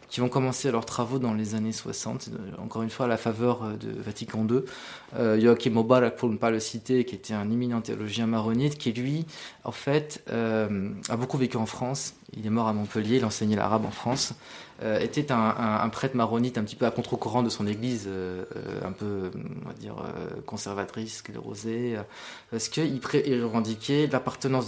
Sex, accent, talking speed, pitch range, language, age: male, French, 205 wpm, 110-130 Hz, French, 20-39